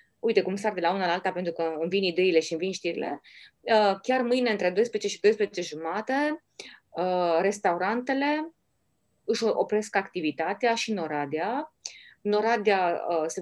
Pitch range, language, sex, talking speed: 165-230 Hz, Romanian, female, 145 wpm